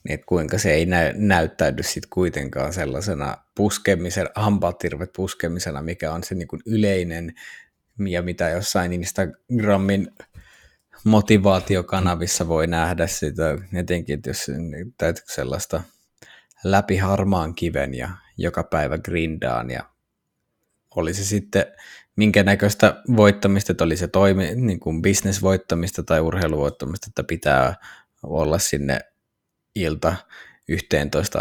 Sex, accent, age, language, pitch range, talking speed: male, native, 20-39, Finnish, 80-100 Hz, 115 wpm